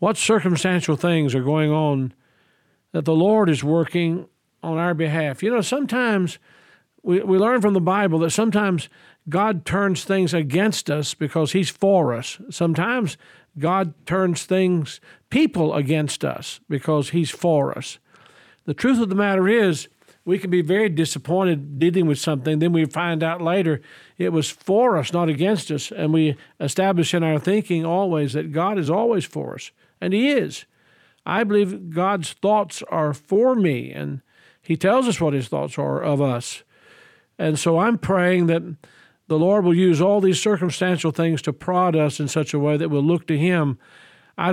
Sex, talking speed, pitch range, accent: male, 175 wpm, 155-190 Hz, American